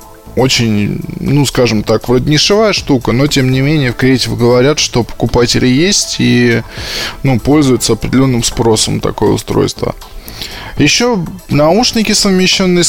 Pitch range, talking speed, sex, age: 115-150 Hz, 125 wpm, male, 20-39